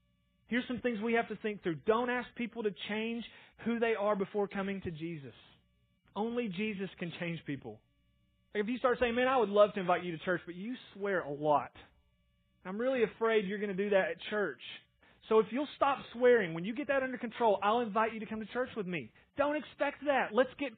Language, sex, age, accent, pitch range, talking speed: English, male, 30-49, American, 155-220 Hz, 225 wpm